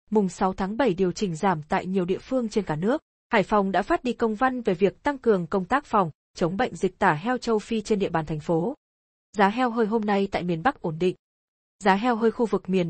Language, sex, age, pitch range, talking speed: Vietnamese, female, 20-39, 185-235 Hz, 260 wpm